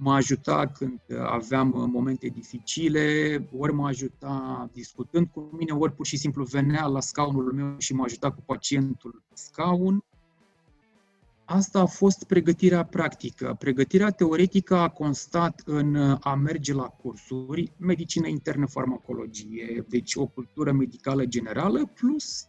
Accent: native